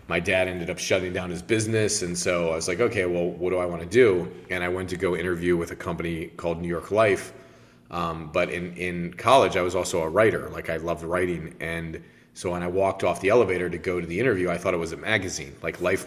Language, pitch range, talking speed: English, 85-100 Hz, 260 wpm